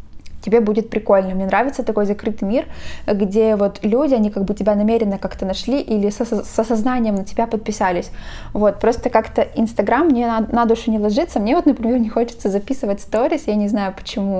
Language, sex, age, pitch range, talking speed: Russian, female, 10-29, 200-235 Hz, 195 wpm